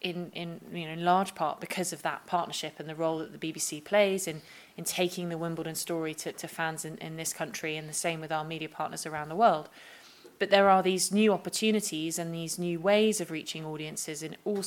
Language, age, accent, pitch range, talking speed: English, 20-39, British, 160-185 Hz, 230 wpm